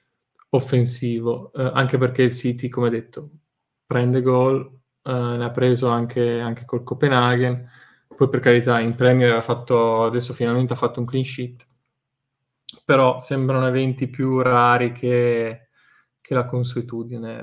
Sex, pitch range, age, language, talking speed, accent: male, 120-135 Hz, 20-39, Italian, 140 wpm, native